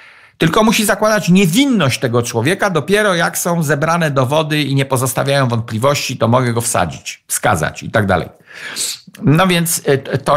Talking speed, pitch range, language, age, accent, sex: 150 wpm, 120-165 Hz, Polish, 50-69, native, male